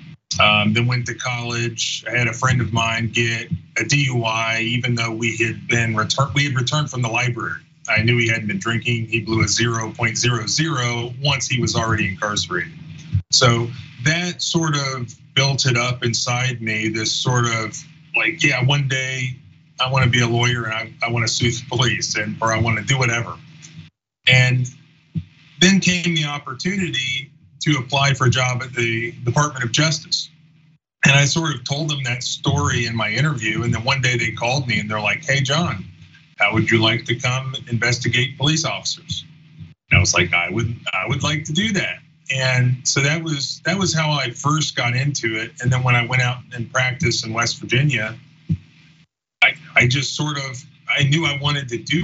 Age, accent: 30-49, American